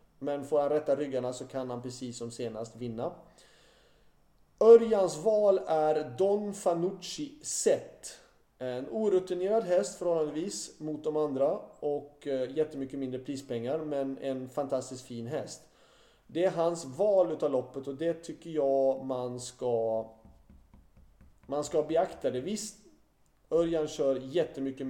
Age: 30-49